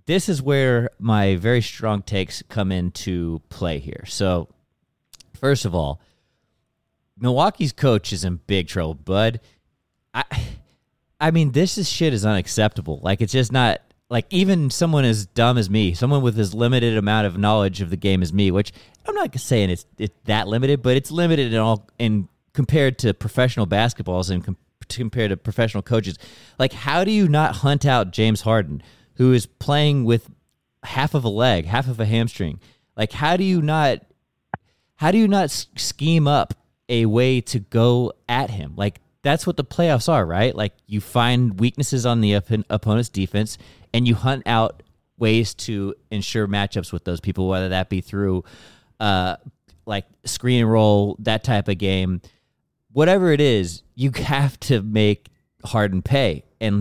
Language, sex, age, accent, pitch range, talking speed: English, male, 30-49, American, 100-130 Hz, 175 wpm